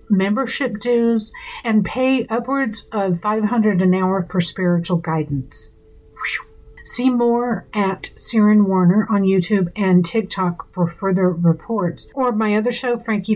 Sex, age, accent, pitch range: female, 50-69, American, 180-220 Hz